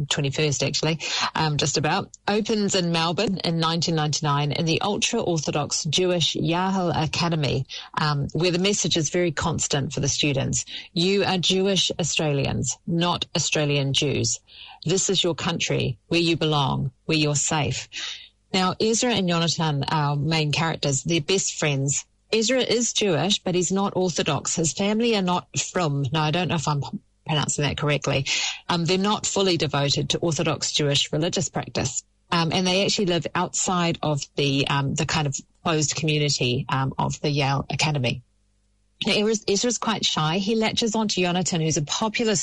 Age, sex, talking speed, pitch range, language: 40-59, female, 165 wpm, 145-185 Hz, English